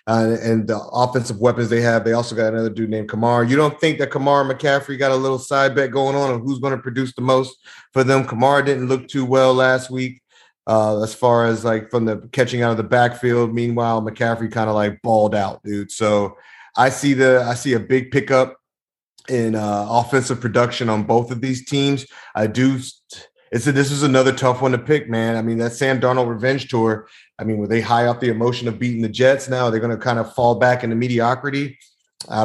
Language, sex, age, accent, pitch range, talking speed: English, male, 30-49, American, 115-130 Hz, 230 wpm